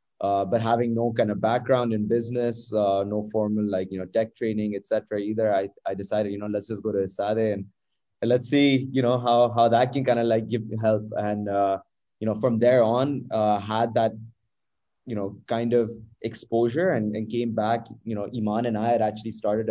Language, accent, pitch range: English, Indian, 105-120 Hz